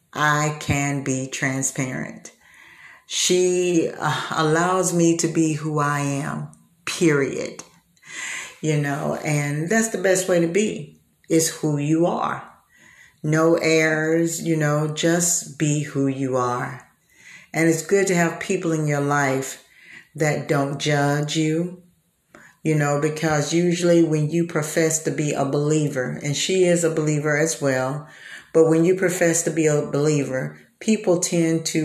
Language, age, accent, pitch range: English, 50-69, American, 145-170 Hz